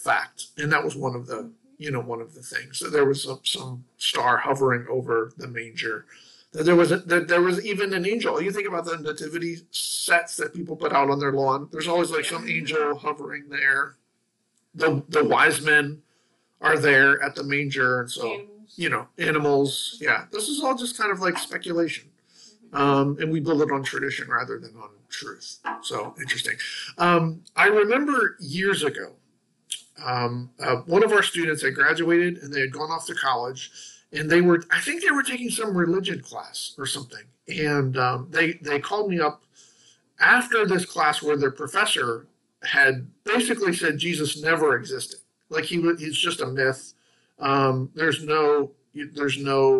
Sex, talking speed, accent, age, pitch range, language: male, 180 wpm, American, 50-69, 135-175 Hz, English